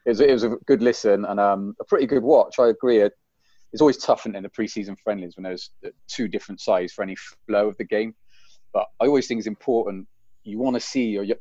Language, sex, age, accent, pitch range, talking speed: English, male, 30-49, British, 95-110 Hz, 215 wpm